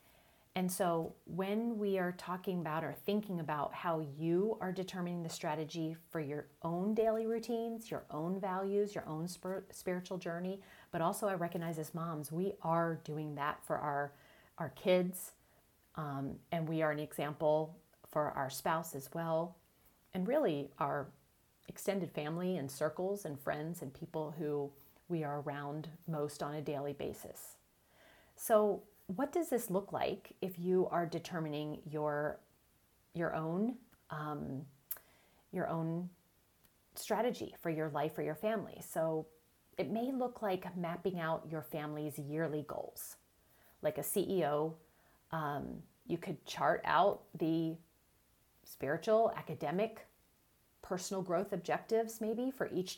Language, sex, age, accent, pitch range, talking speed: English, female, 40-59, American, 155-190 Hz, 140 wpm